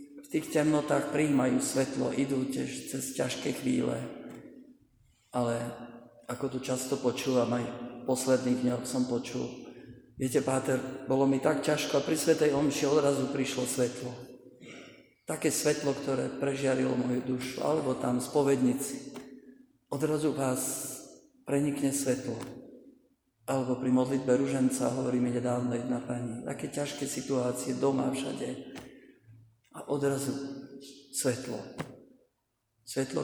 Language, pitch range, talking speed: Slovak, 125-140 Hz, 115 wpm